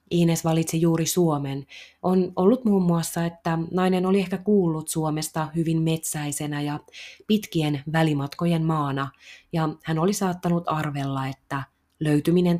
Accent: native